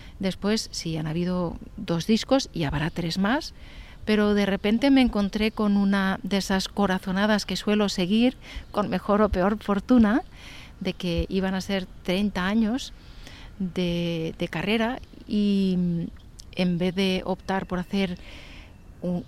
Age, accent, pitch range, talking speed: 40-59, Spanish, 180-210 Hz, 145 wpm